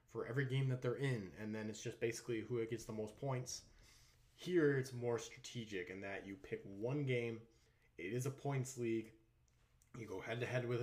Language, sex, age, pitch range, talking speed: English, male, 20-39, 100-125 Hz, 190 wpm